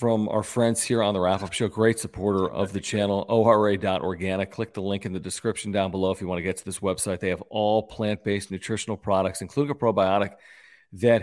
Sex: male